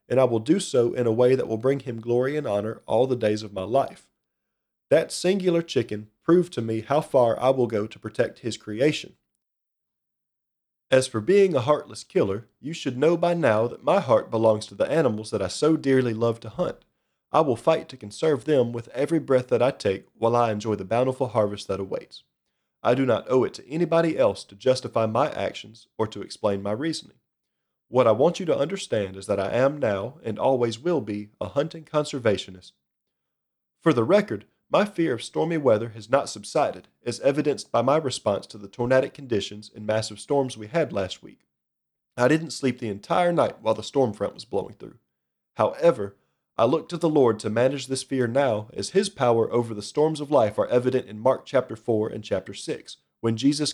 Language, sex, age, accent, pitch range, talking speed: English, male, 40-59, American, 105-140 Hz, 210 wpm